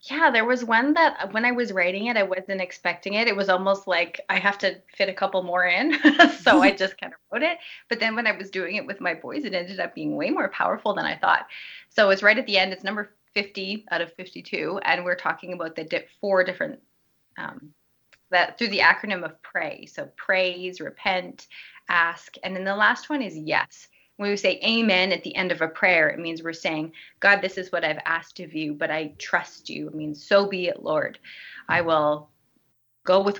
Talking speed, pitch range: 230 wpm, 175-220 Hz